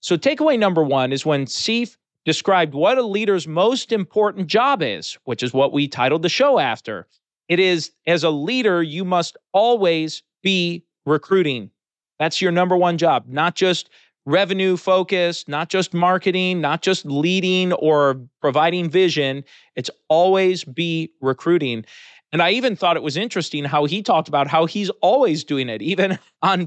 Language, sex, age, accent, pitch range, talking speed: English, male, 40-59, American, 150-195 Hz, 165 wpm